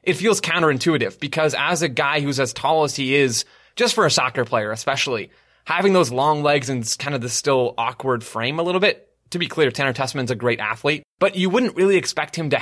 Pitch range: 120-155 Hz